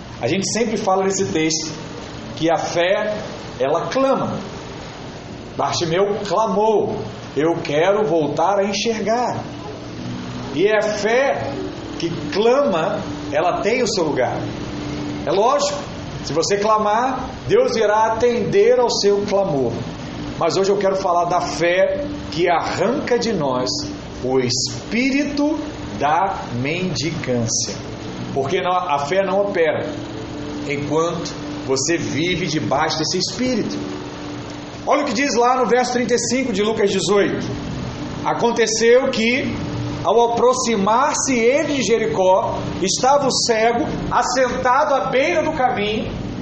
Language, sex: Portuguese, male